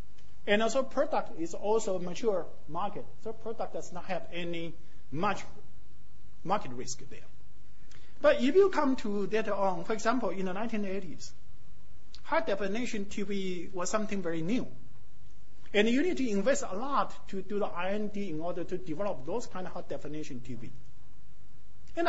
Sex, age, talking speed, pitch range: male, 50-69, 160 wpm, 130-210 Hz